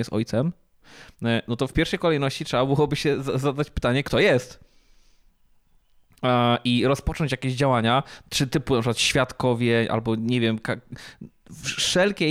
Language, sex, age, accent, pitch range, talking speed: Polish, male, 20-39, native, 120-145 Hz, 130 wpm